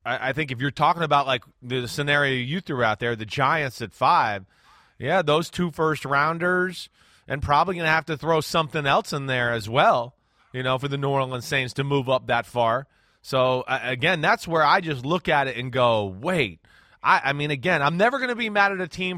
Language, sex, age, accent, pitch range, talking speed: English, male, 30-49, American, 130-170 Hz, 220 wpm